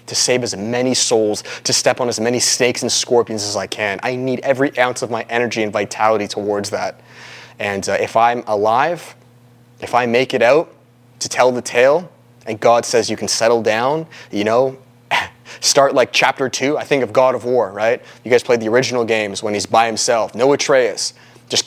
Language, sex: English, male